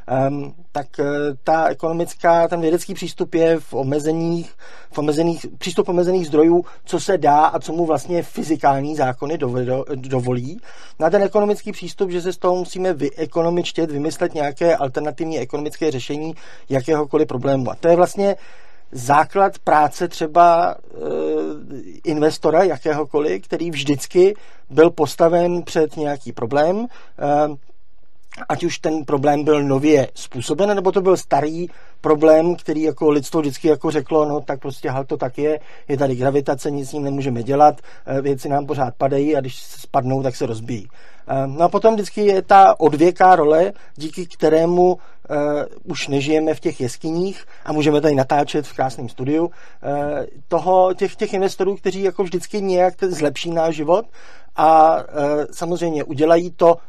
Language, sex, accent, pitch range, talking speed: Czech, male, native, 145-175 Hz, 150 wpm